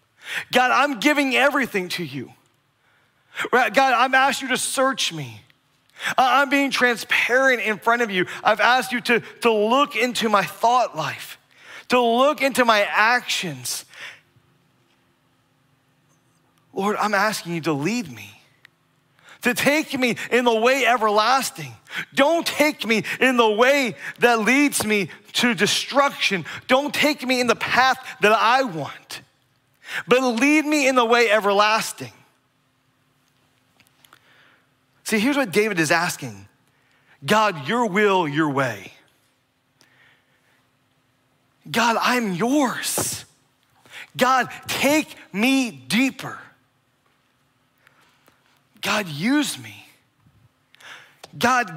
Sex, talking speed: male, 115 wpm